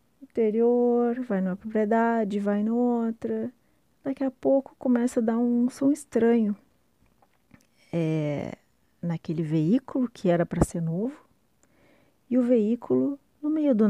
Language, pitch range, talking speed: Portuguese, 170-230 Hz, 120 wpm